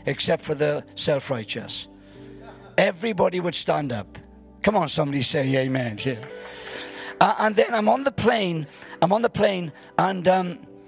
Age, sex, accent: 50-69, male, British